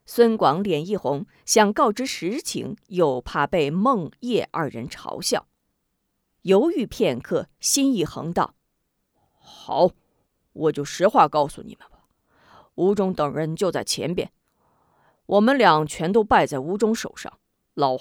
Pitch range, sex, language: 160-255 Hz, female, Chinese